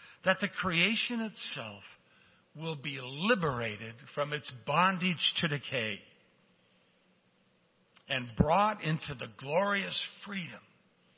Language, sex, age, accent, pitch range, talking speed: English, male, 60-79, American, 150-195 Hz, 95 wpm